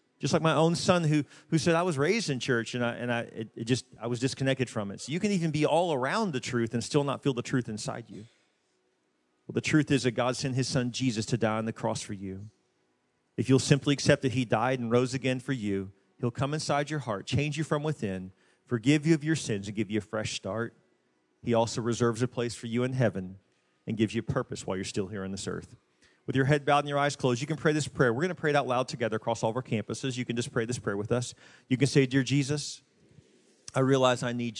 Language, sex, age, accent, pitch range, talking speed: English, male, 40-59, American, 110-140 Hz, 260 wpm